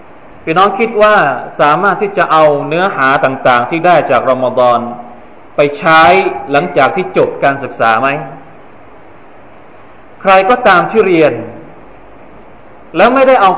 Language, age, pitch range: Thai, 20-39, 135-175 Hz